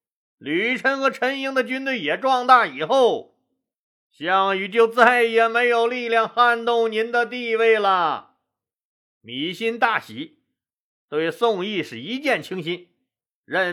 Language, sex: Chinese, male